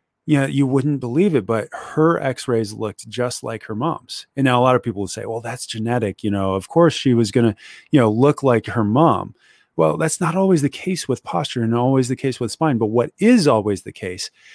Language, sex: English, male